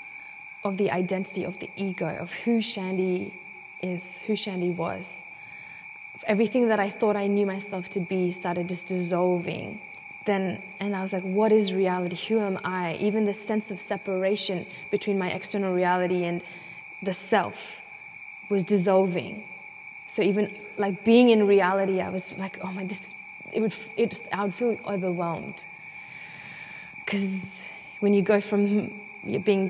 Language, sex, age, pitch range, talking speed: Spanish, female, 20-39, 180-210 Hz, 150 wpm